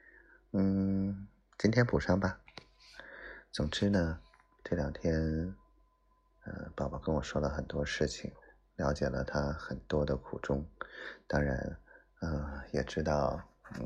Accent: native